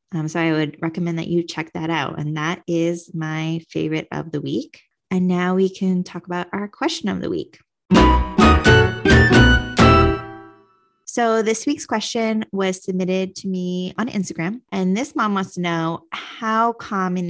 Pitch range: 160-190 Hz